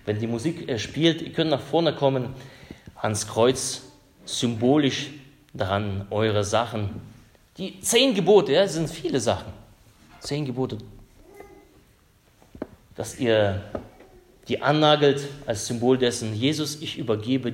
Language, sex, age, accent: German, male, 30-49, German